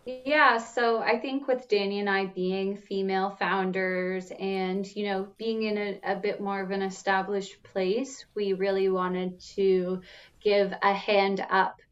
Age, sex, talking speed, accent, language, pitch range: 20-39, female, 160 wpm, American, English, 190-220 Hz